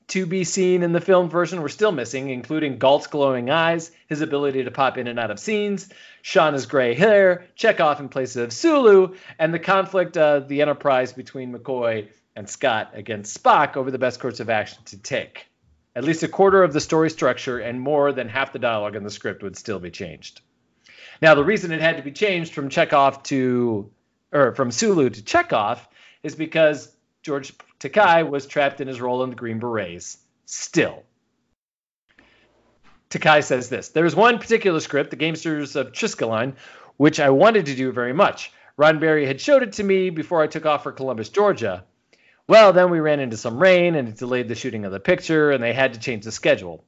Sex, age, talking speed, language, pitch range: male, 40-59, 200 wpm, English, 125-170 Hz